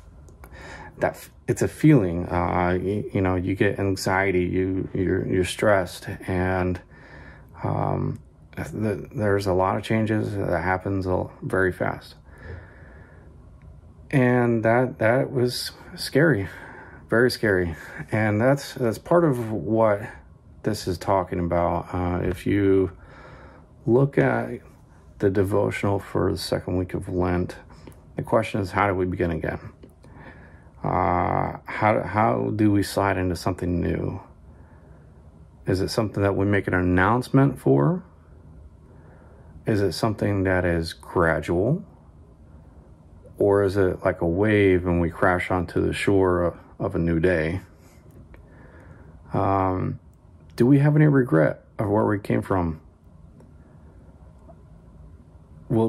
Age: 30-49